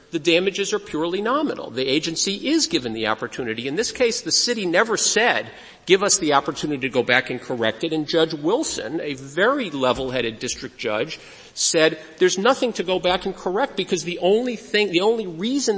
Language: English